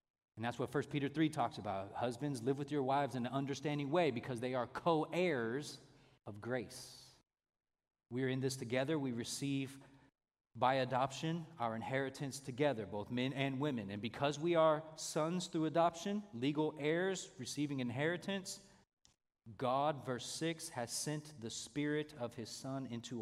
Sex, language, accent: male, English, American